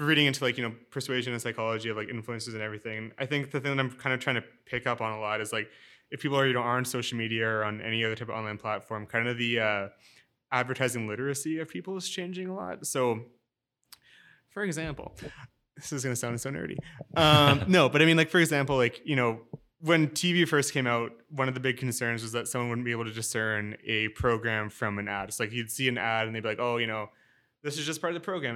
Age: 20-39